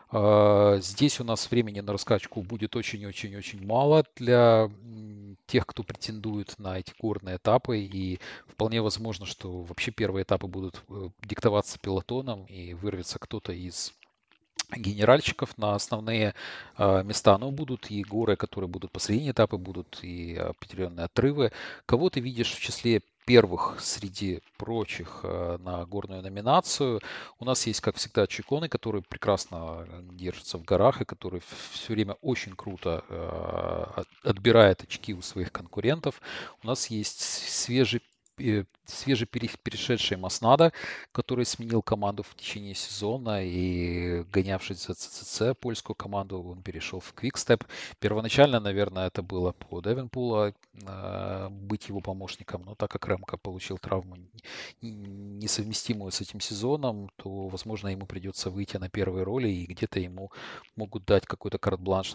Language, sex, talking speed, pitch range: Russian, male, 130 wpm, 95-115 Hz